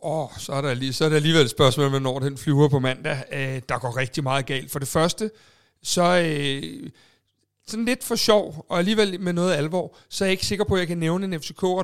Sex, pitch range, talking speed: male, 150-185 Hz, 225 wpm